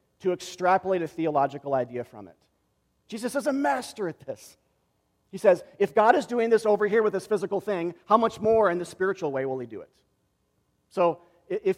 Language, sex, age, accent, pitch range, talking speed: English, male, 40-59, American, 140-195 Hz, 200 wpm